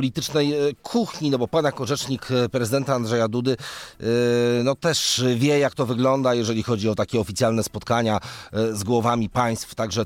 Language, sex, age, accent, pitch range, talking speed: Polish, male, 40-59, native, 100-120 Hz, 155 wpm